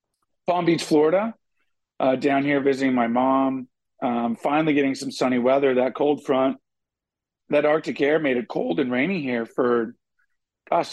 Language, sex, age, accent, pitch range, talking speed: English, male, 40-59, American, 130-160 Hz, 160 wpm